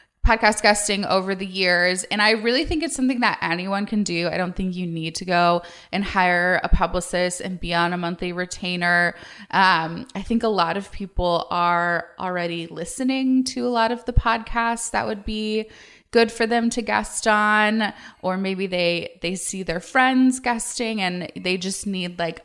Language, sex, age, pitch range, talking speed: English, female, 20-39, 175-225 Hz, 185 wpm